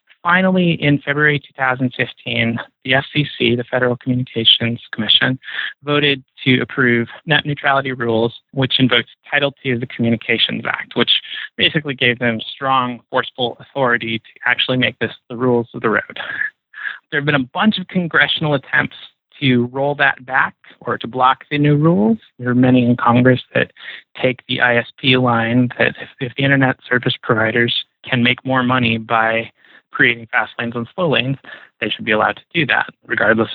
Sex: male